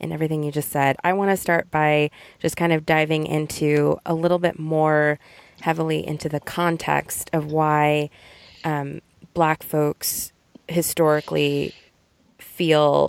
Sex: female